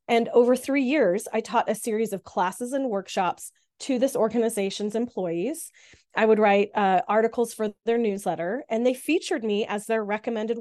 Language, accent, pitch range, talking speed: English, American, 210-265 Hz, 175 wpm